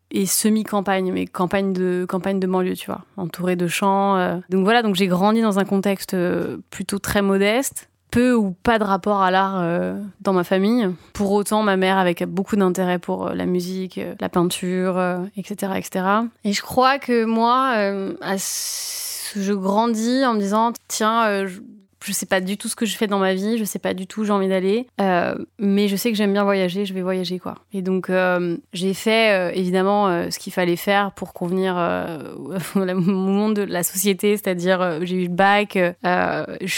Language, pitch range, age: French, 185-205 Hz, 20-39